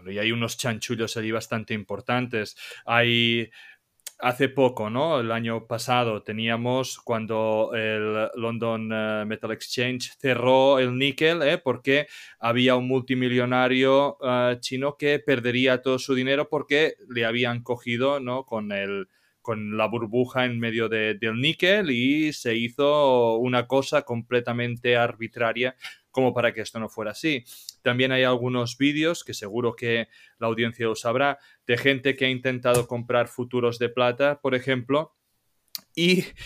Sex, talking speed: male, 145 wpm